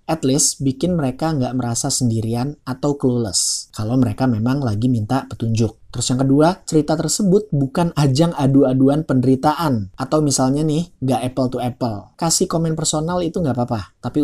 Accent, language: native, Indonesian